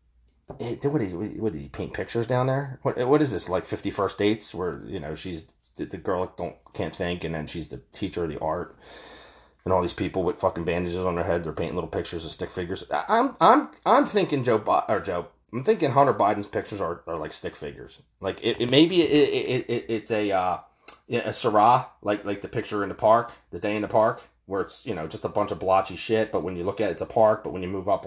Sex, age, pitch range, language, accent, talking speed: male, 30-49, 90-135 Hz, English, American, 245 wpm